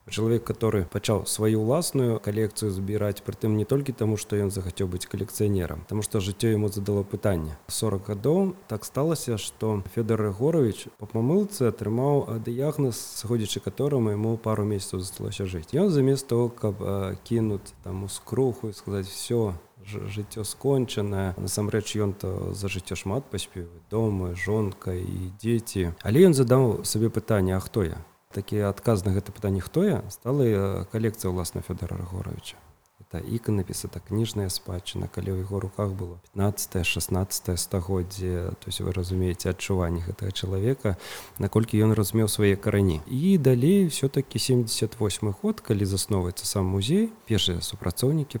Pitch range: 95-115 Hz